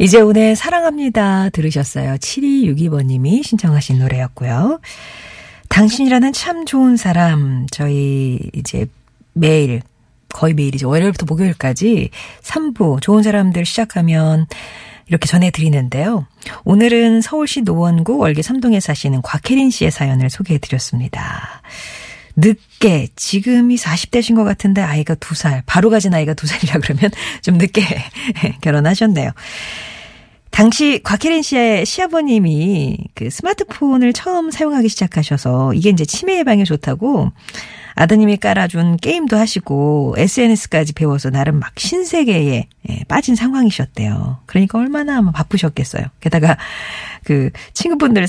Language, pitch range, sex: Korean, 145-220 Hz, female